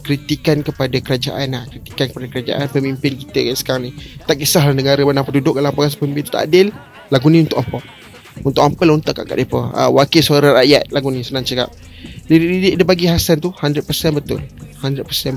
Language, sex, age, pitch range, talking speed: Malay, male, 30-49, 130-155 Hz, 185 wpm